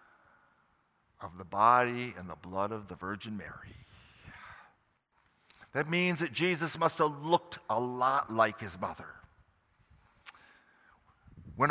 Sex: male